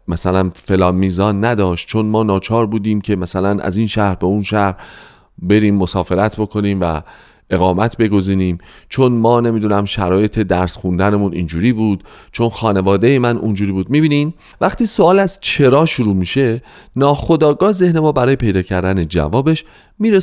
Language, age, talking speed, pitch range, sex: Persian, 40-59, 145 wpm, 90-125 Hz, male